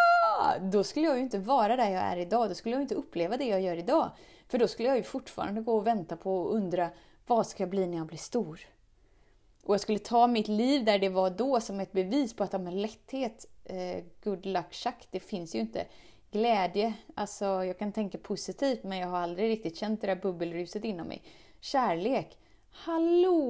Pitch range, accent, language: 190-255 Hz, native, Swedish